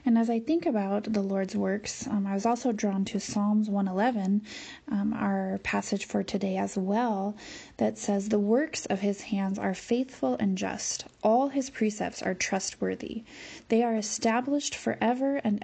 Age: 20-39